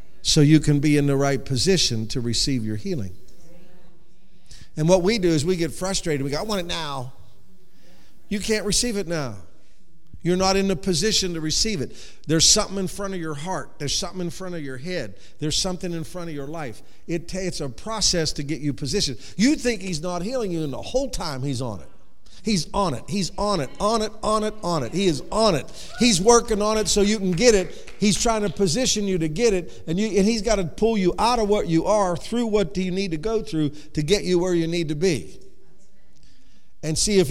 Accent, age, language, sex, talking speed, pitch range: American, 50-69, English, male, 230 wpm, 150-205 Hz